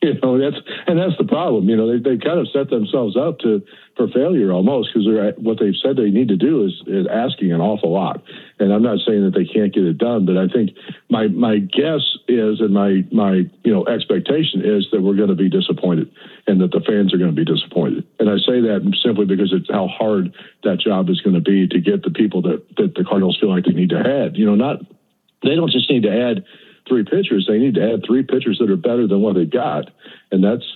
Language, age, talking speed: English, 50-69, 250 wpm